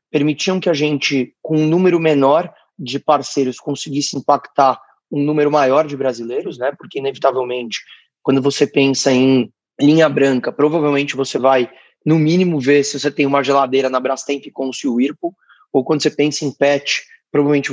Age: 20-39